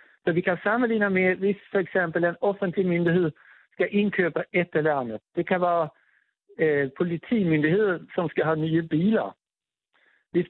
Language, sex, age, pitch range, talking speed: Danish, male, 60-79, 160-200 Hz, 145 wpm